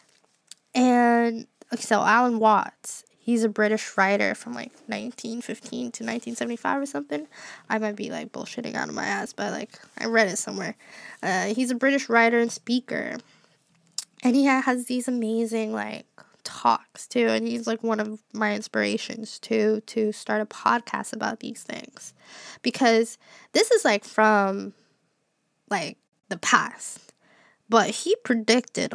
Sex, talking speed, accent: female, 145 wpm, American